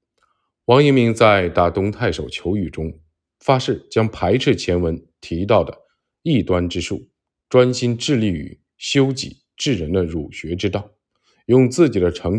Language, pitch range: Chinese, 95-125 Hz